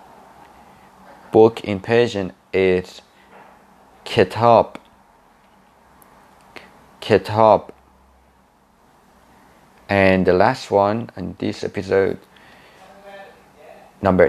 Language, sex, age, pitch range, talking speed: Persian, male, 30-49, 85-105 Hz, 60 wpm